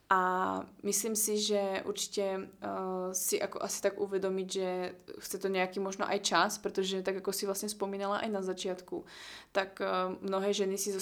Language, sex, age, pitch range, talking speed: Slovak, female, 20-39, 185-195 Hz, 180 wpm